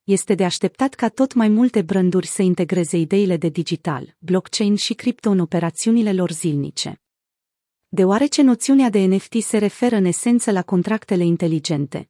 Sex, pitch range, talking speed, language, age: female, 180-225 Hz, 155 wpm, Romanian, 30-49